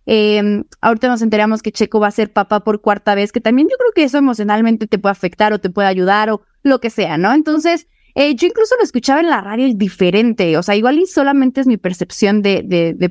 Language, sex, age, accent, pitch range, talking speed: Spanish, female, 20-39, Mexican, 205-265 Hz, 240 wpm